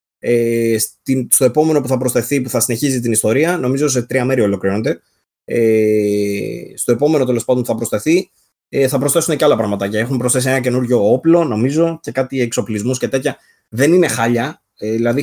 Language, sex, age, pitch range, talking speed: Greek, male, 20-39, 110-145 Hz, 165 wpm